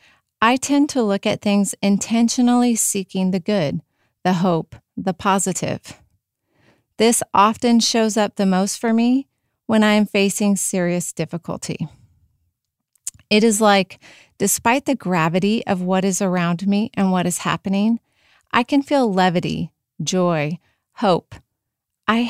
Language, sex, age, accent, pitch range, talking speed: English, female, 30-49, American, 180-220 Hz, 135 wpm